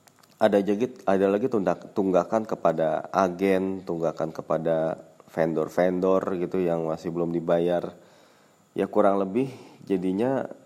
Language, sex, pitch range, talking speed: Indonesian, male, 85-100 Hz, 115 wpm